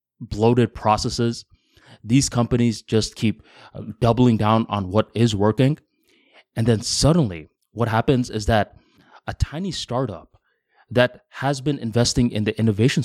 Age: 20-39